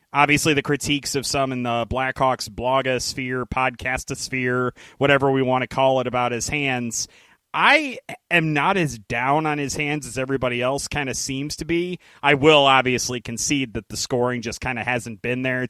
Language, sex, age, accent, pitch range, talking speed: English, male, 30-49, American, 125-155 Hz, 185 wpm